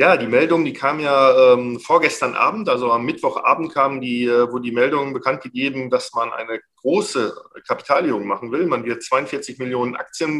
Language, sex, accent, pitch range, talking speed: German, male, German, 120-165 Hz, 185 wpm